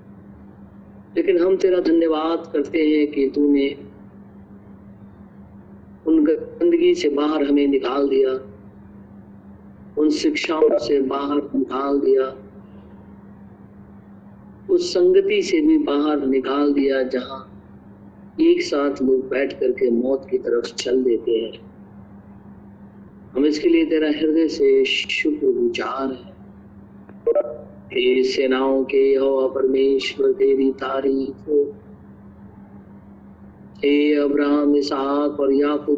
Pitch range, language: 100-155 Hz, Hindi